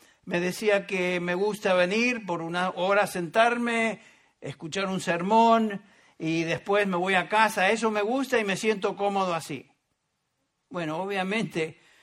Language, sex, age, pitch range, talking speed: English, male, 60-79, 165-210 Hz, 150 wpm